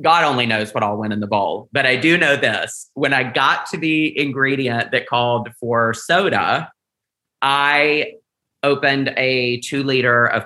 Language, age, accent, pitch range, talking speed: English, 30-49, American, 120-155 Hz, 170 wpm